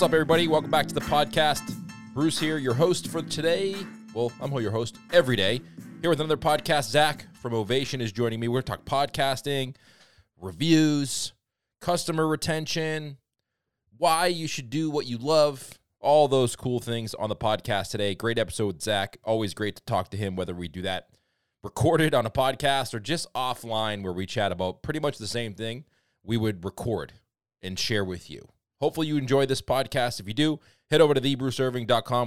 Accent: American